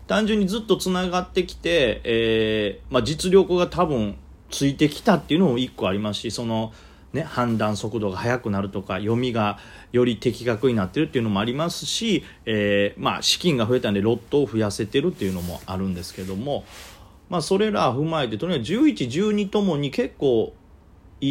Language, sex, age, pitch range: Japanese, male, 40-59, 100-160 Hz